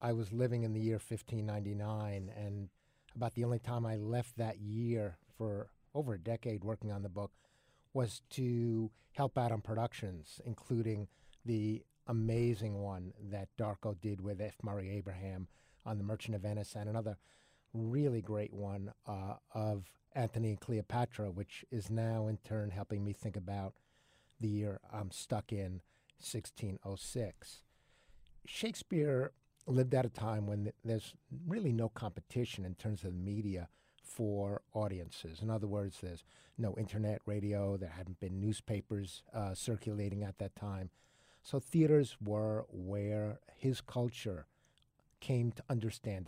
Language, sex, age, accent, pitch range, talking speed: English, male, 50-69, American, 100-115 Hz, 145 wpm